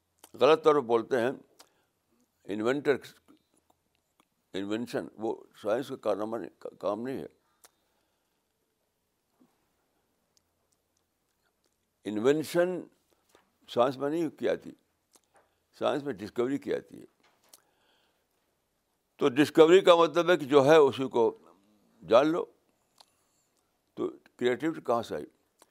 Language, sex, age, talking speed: Urdu, male, 60-79, 100 wpm